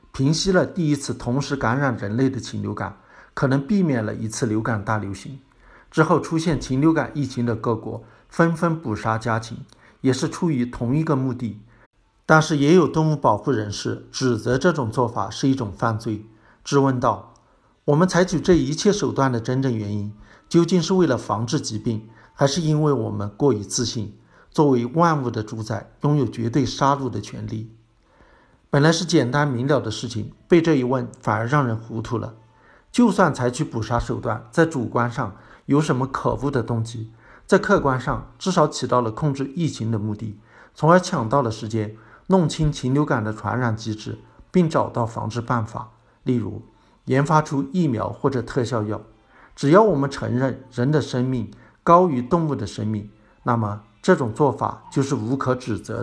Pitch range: 110-145 Hz